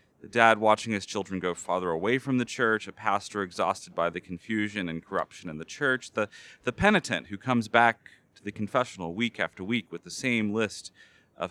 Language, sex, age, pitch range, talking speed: English, male, 30-49, 100-140 Hz, 205 wpm